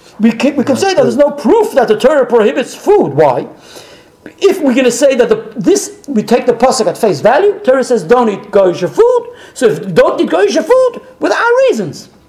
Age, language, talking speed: 50-69, English, 220 wpm